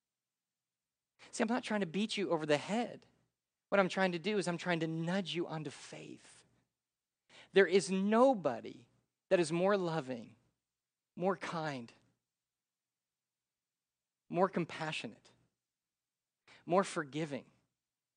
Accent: American